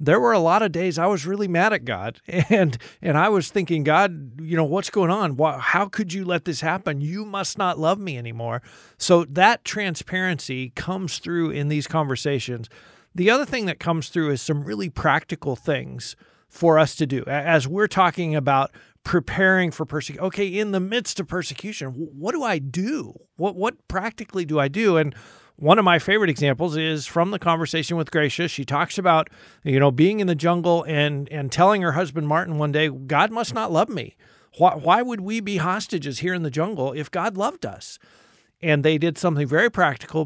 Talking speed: 200 wpm